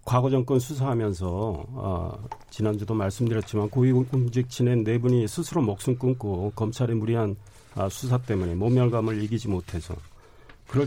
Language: Korean